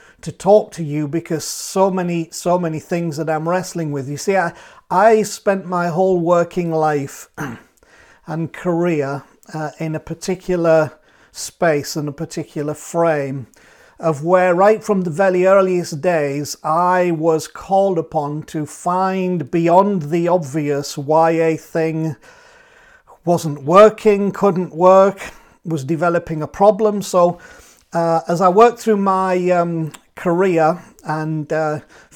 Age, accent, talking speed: 50-69, British, 135 wpm